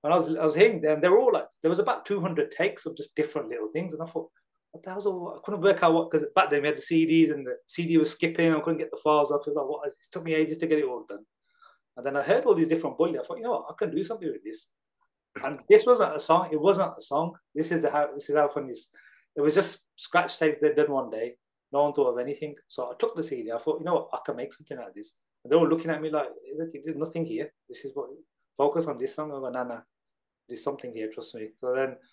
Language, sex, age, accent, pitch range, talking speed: English, male, 30-49, British, 145-195 Hz, 290 wpm